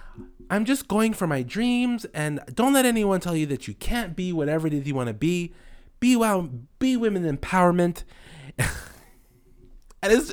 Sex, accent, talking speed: male, American, 175 wpm